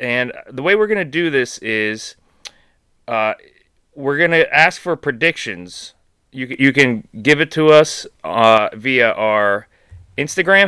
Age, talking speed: 30-49, 150 wpm